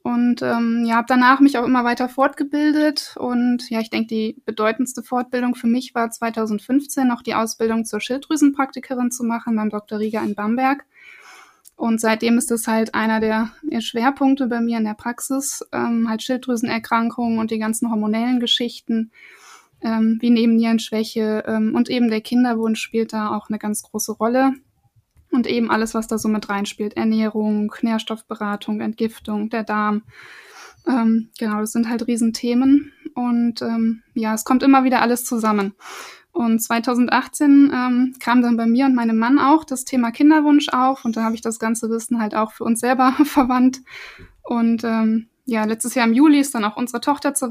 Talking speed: 175 wpm